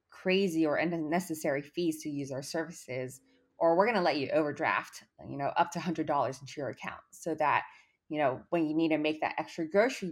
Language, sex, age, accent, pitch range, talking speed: English, female, 20-39, American, 145-180 Hz, 220 wpm